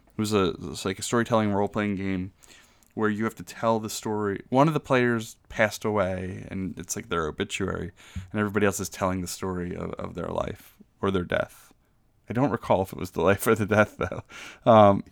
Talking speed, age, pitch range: 220 wpm, 20-39, 95-130 Hz